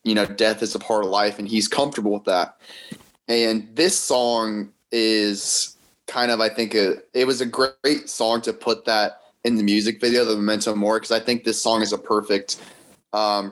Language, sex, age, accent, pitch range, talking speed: English, male, 20-39, American, 105-115 Hz, 200 wpm